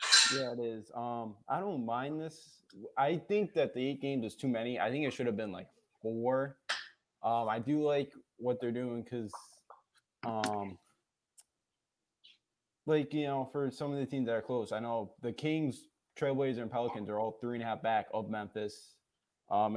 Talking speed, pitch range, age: 190 wpm, 110-135 Hz, 20-39